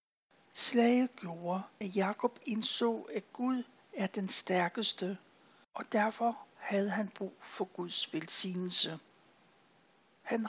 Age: 60-79